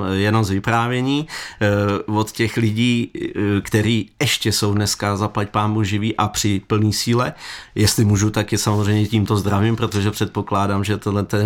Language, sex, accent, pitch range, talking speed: Czech, male, native, 105-120 Hz, 145 wpm